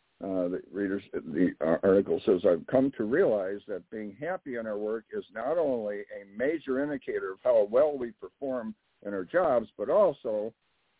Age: 60-79